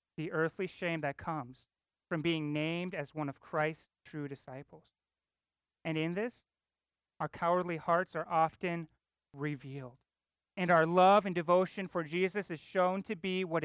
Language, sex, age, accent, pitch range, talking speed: English, male, 30-49, American, 150-185 Hz, 155 wpm